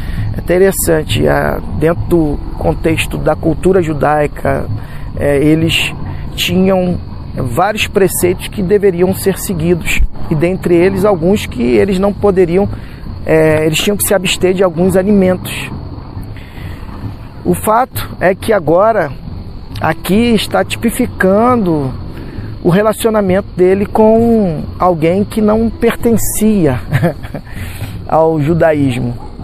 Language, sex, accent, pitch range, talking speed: Portuguese, male, Brazilian, 135-195 Hz, 100 wpm